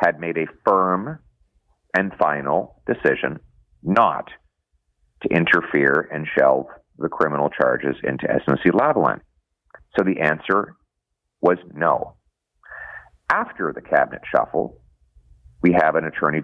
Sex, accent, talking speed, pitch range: male, American, 115 wpm, 65-80 Hz